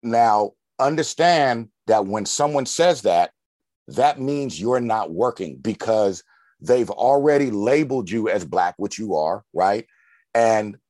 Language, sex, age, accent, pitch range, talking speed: English, male, 50-69, American, 105-140 Hz, 130 wpm